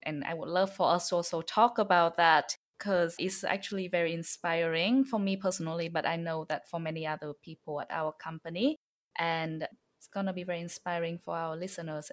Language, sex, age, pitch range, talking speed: English, female, 20-39, 165-195 Hz, 200 wpm